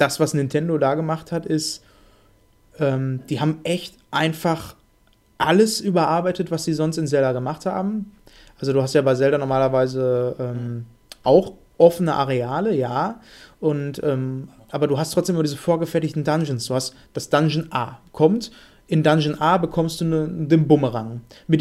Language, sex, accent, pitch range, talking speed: German, male, German, 130-160 Hz, 155 wpm